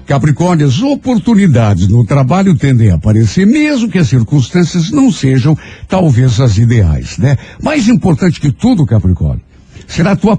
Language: Portuguese